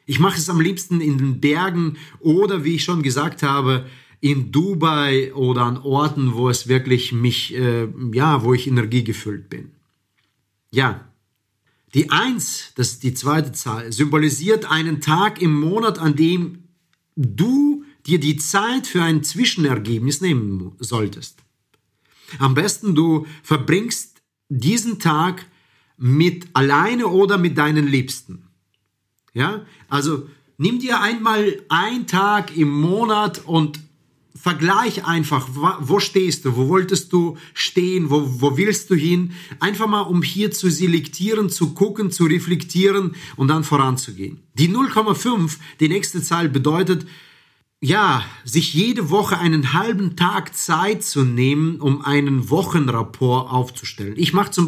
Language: German